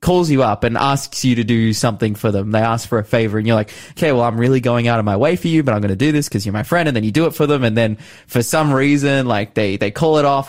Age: 20-39